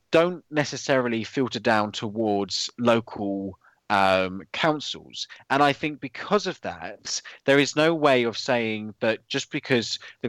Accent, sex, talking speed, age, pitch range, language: British, male, 140 wpm, 20-39, 110-135 Hz, English